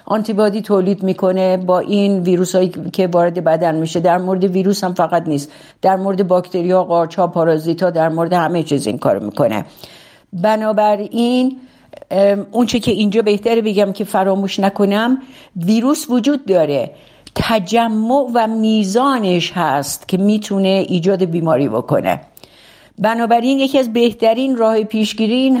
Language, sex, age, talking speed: Persian, female, 50-69, 145 wpm